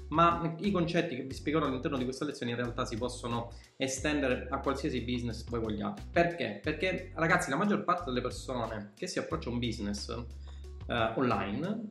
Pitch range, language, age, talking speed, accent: 115-165 Hz, Italian, 20-39, 180 wpm, native